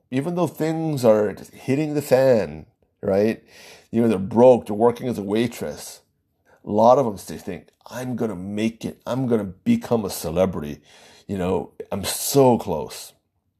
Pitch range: 110-175 Hz